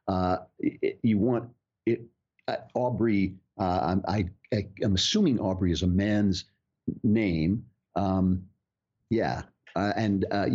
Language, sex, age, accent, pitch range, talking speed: English, male, 50-69, American, 90-110 Hz, 120 wpm